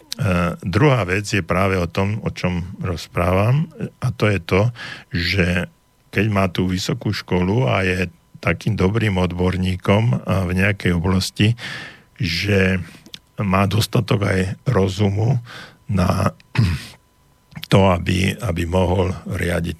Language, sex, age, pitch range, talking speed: Slovak, male, 50-69, 85-100 Hz, 120 wpm